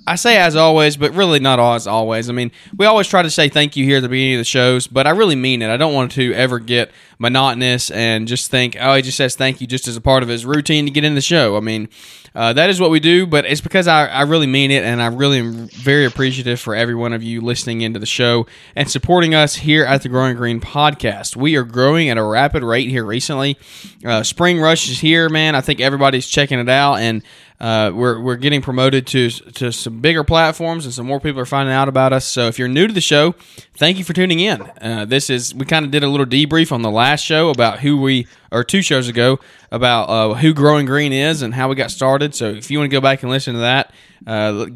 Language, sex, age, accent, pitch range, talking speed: English, male, 20-39, American, 120-150 Hz, 260 wpm